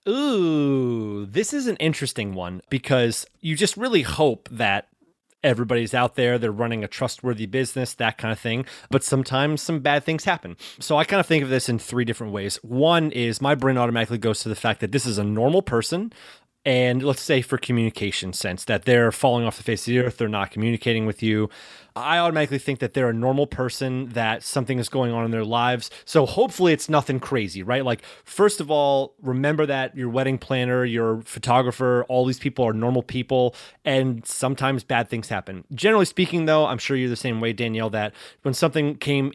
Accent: American